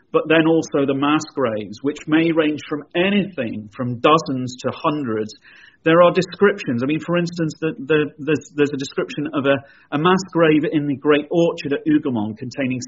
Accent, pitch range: British, 125-155 Hz